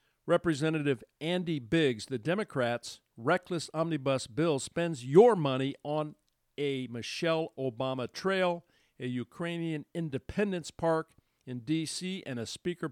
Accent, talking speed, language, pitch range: American, 115 wpm, English, 115-150 Hz